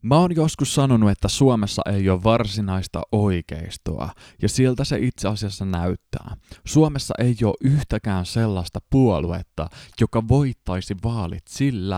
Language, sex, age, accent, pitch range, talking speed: Finnish, male, 20-39, native, 95-125 Hz, 130 wpm